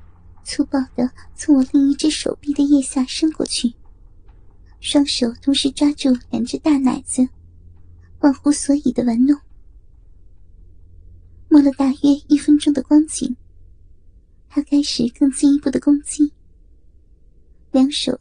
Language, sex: Chinese, male